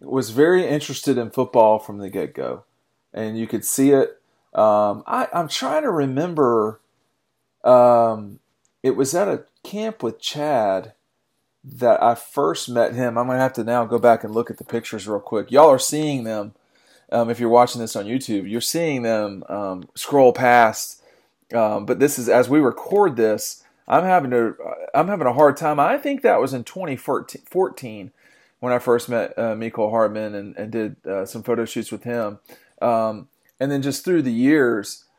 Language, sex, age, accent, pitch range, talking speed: English, male, 40-59, American, 115-140 Hz, 185 wpm